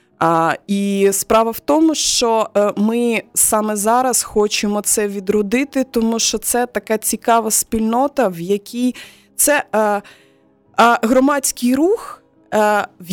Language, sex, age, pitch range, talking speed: Ukrainian, female, 20-39, 180-230 Hz, 130 wpm